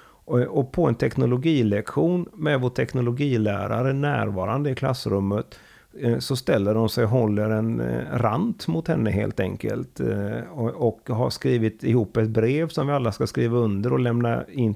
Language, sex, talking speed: Swedish, male, 145 wpm